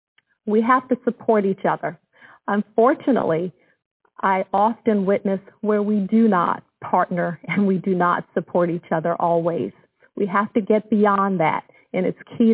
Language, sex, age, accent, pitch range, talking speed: English, female, 50-69, American, 175-210 Hz, 155 wpm